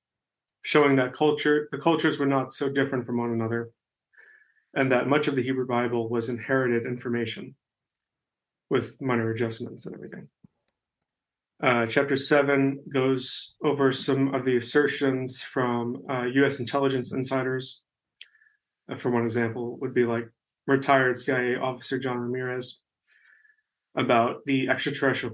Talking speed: 135 wpm